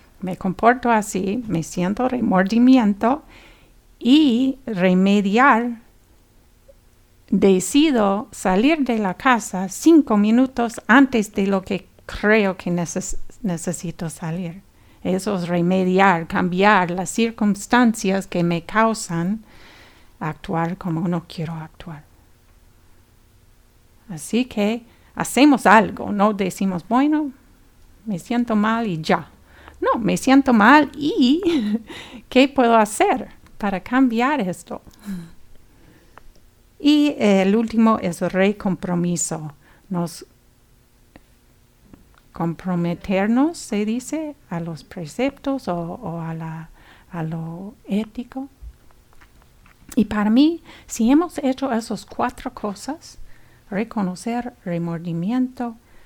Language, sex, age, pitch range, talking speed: English, female, 50-69, 175-240 Hz, 95 wpm